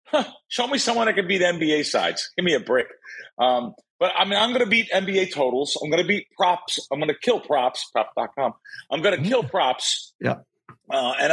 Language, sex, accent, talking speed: English, male, American, 205 wpm